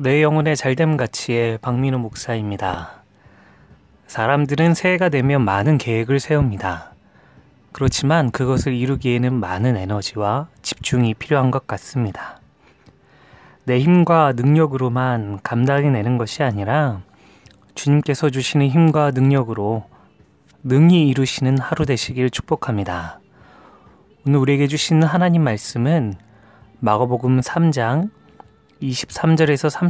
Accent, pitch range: native, 110-150 Hz